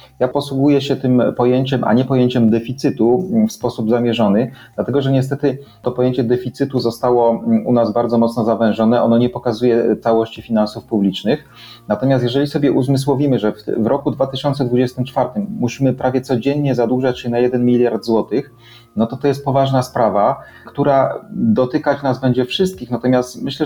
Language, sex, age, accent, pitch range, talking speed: Polish, male, 30-49, native, 115-135 Hz, 150 wpm